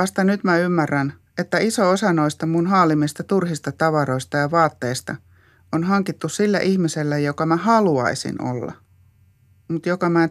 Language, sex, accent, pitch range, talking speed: Finnish, male, native, 125-170 Hz, 150 wpm